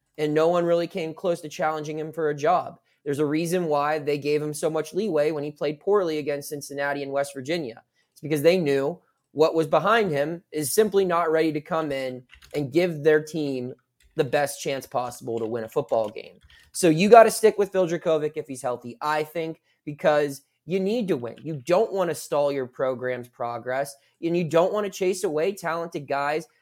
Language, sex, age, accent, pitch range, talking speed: English, male, 20-39, American, 145-175 Hz, 210 wpm